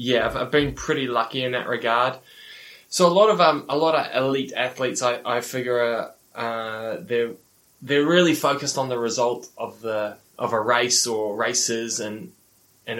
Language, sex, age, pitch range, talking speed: English, male, 10-29, 110-155 Hz, 185 wpm